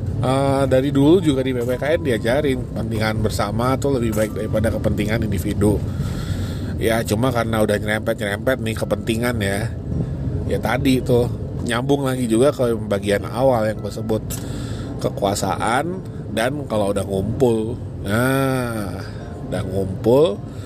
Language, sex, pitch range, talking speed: Indonesian, male, 105-130 Hz, 125 wpm